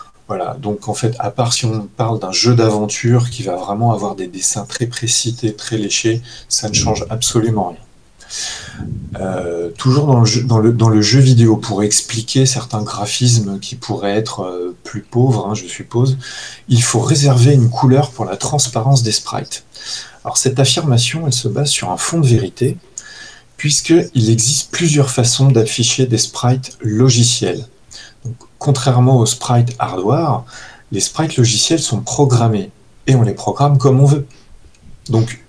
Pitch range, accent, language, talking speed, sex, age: 105-130 Hz, French, French, 155 wpm, male, 30-49